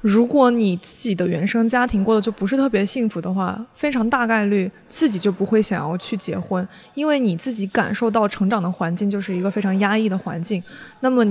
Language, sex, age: Chinese, female, 20-39